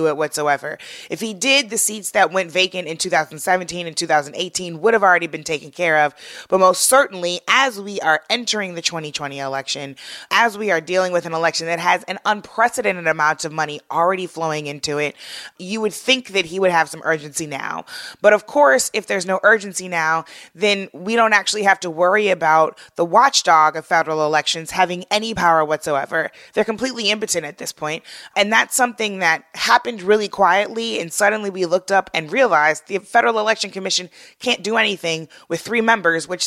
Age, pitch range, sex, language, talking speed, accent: 20-39, 160-205 Hz, female, English, 190 wpm, American